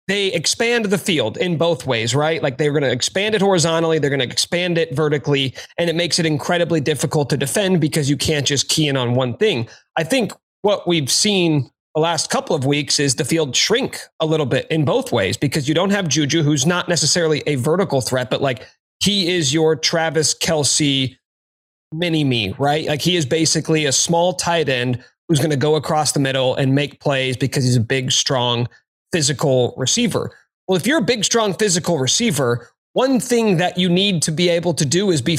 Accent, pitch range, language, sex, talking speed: American, 140-175 Hz, English, male, 210 wpm